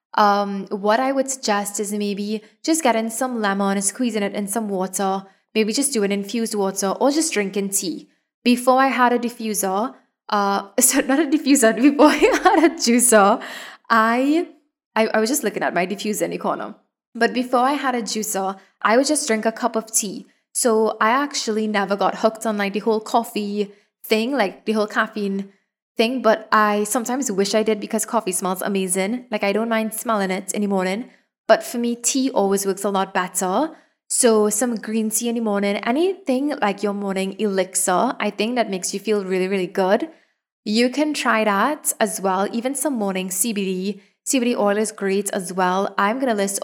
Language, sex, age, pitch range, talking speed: English, female, 20-39, 200-245 Hz, 200 wpm